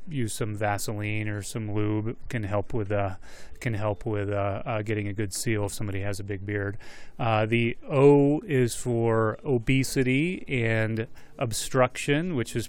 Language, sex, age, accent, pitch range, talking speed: English, male, 30-49, American, 105-125 Hz, 165 wpm